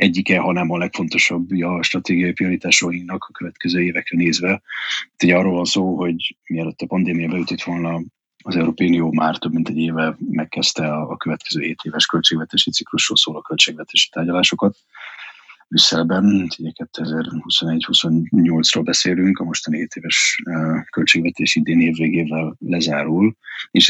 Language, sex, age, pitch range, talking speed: Hungarian, male, 30-49, 80-90 Hz, 130 wpm